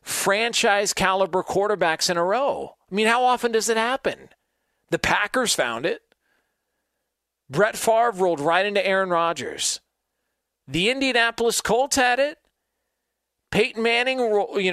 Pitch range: 180-235 Hz